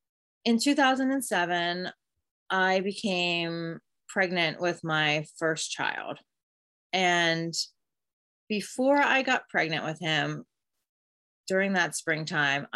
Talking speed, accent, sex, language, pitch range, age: 90 wpm, American, female, English, 160-195 Hz, 30-49